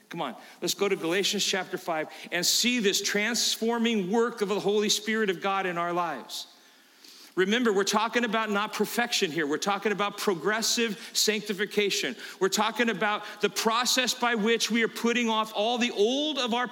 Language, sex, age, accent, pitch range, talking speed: English, male, 40-59, American, 205-245 Hz, 180 wpm